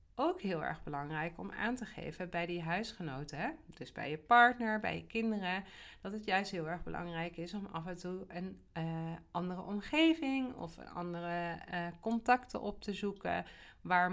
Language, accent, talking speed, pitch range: Dutch, Dutch, 175 wpm, 160-205 Hz